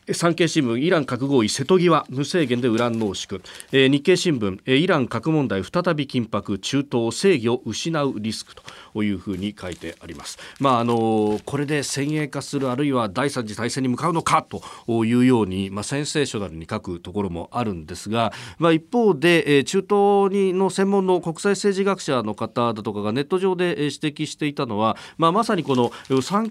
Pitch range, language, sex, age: 105-160 Hz, Japanese, male, 40-59